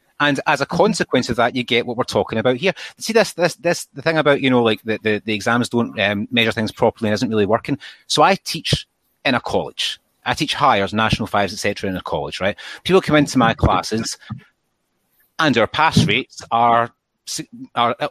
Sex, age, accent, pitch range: male, 30-49, British, 110-155 Hz